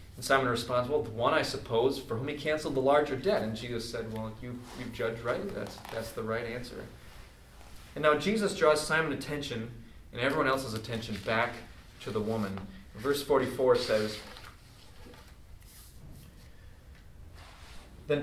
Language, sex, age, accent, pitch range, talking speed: English, male, 30-49, American, 105-150 Hz, 155 wpm